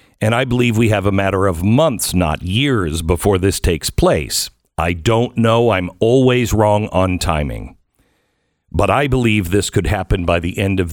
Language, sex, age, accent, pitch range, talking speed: English, male, 50-69, American, 95-120 Hz, 180 wpm